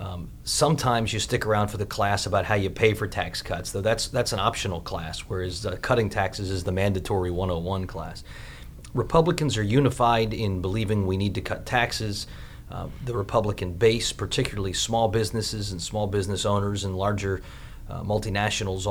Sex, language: male, English